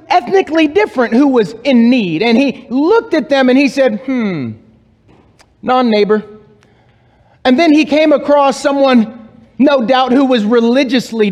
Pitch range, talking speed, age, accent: 170-275 Hz, 145 wpm, 30-49, American